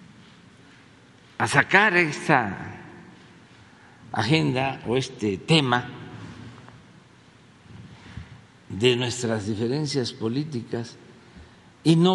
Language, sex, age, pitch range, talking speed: Spanish, male, 60-79, 120-180 Hz, 65 wpm